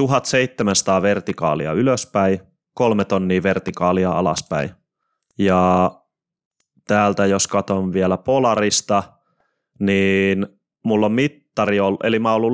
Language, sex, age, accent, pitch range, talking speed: Finnish, male, 20-39, native, 95-115 Hz, 105 wpm